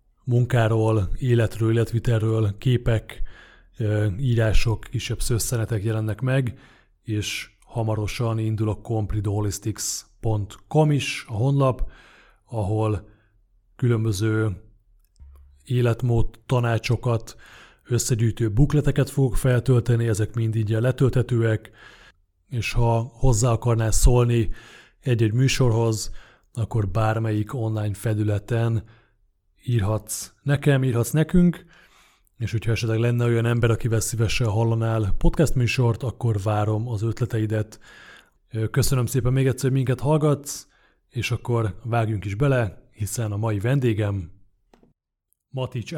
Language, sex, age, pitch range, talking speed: Hungarian, male, 30-49, 110-130 Hz, 100 wpm